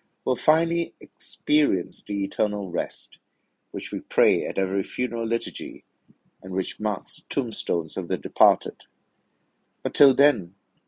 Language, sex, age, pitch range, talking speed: English, male, 50-69, 95-115 Hz, 130 wpm